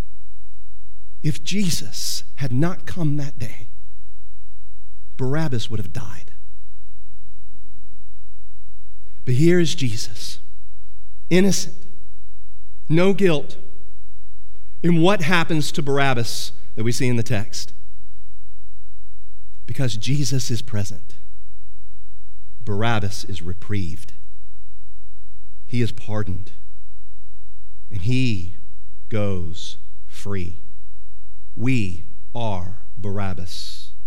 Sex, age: male, 40-59